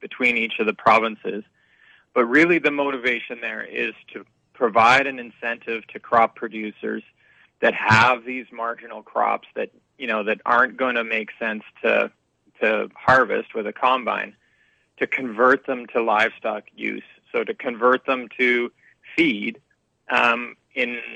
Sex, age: male, 30-49